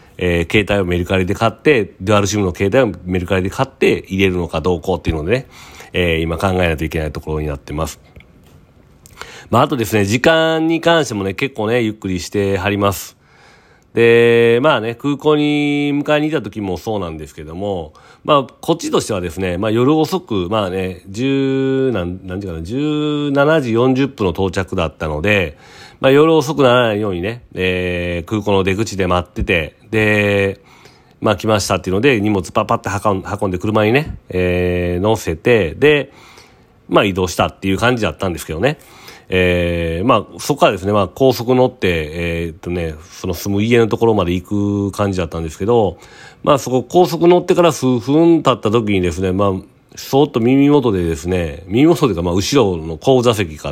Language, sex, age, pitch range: Japanese, male, 40-59, 90-125 Hz